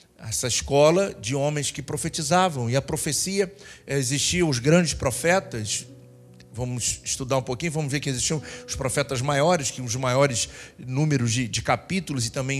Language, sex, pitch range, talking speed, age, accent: Portuguese, male, 135-180 Hz, 155 wpm, 50-69, Brazilian